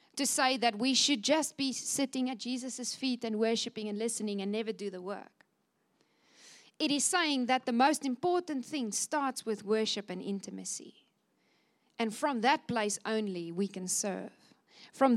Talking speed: 165 wpm